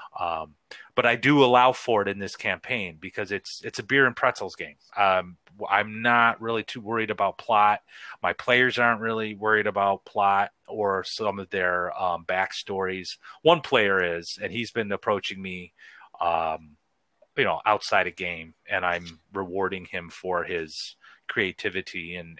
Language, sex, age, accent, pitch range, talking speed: English, male, 30-49, American, 90-115 Hz, 165 wpm